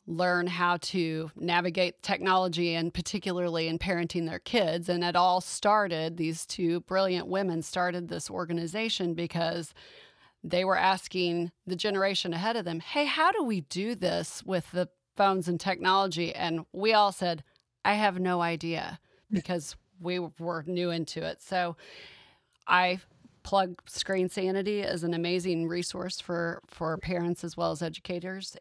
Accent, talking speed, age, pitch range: American, 150 wpm, 30-49, 165-190 Hz